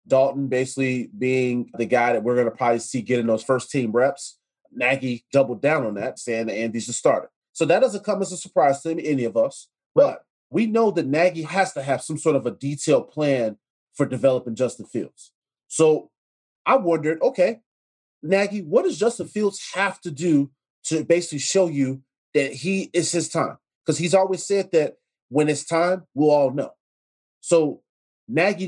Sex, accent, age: male, American, 30-49